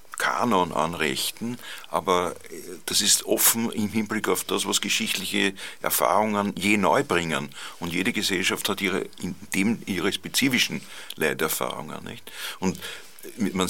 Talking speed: 125 wpm